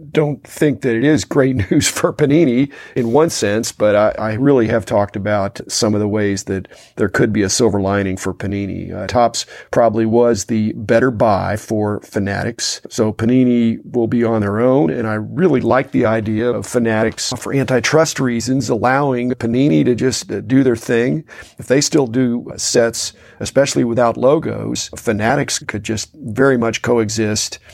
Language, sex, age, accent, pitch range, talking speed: English, male, 40-59, American, 110-130 Hz, 175 wpm